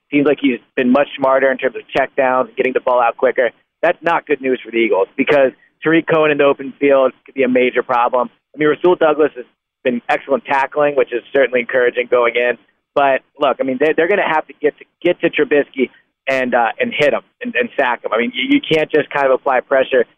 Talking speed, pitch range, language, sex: 240 wpm, 130-165 Hz, English, male